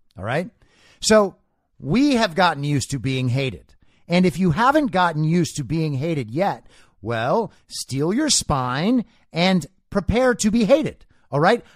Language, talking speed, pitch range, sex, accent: English, 160 wpm, 155-230 Hz, male, American